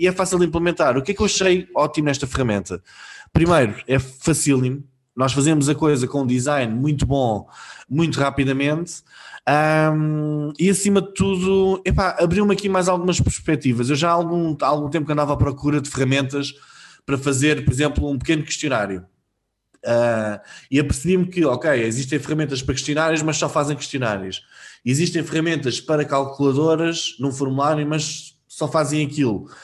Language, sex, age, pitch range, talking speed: Portuguese, male, 20-39, 135-170 Hz, 165 wpm